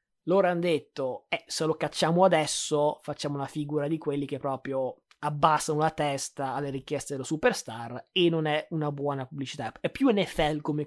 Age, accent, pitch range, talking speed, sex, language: 20-39, native, 140-175 Hz, 175 wpm, male, Italian